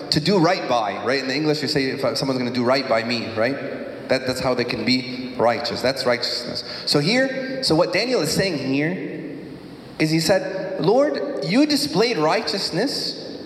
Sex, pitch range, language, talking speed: male, 120-195 Hz, English, 185 wpm